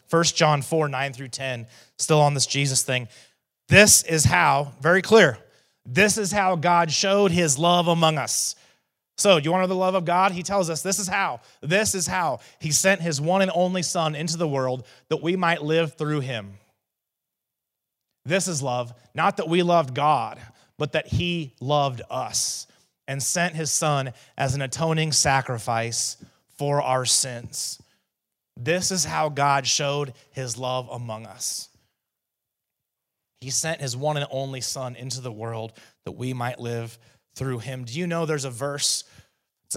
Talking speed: 175 wpm